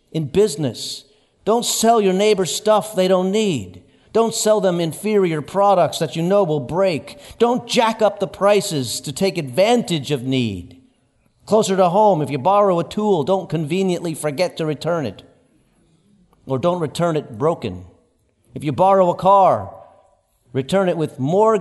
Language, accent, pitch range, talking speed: English, American, 135-180 Hz, 160 wpm